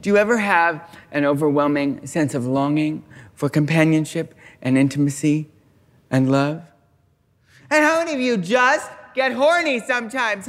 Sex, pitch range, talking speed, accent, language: male, 145-215 Hz, 135 wpm, American, English